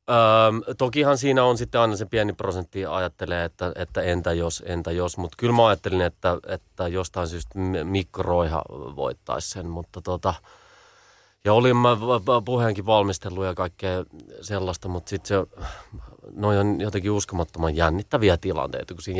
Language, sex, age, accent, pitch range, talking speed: Finnish, male, 30-49, native, 85-100 Hz, 150 wpm